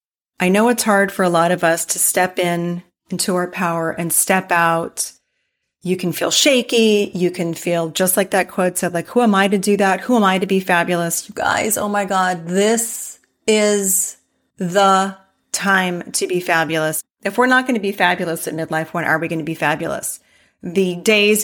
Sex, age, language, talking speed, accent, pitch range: female, 30-49, English, 205 wpm, American, 170-210 Hz